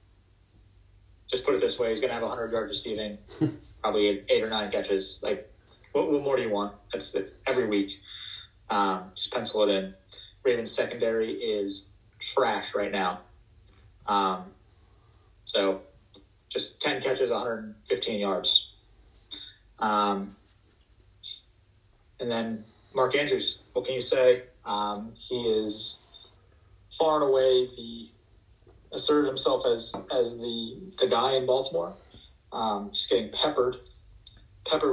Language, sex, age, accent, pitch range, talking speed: English, male, 30-49, American, 100-120 Hz, 130 wpm